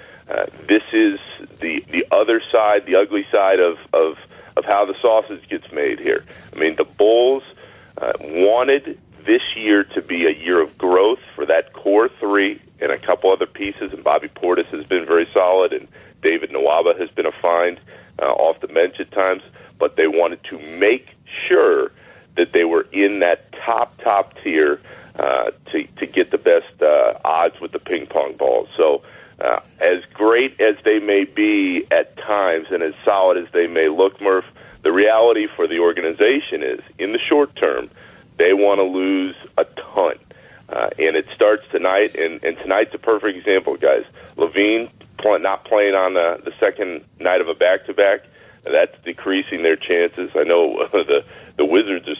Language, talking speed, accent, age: English, 180 wpm, American, 40-59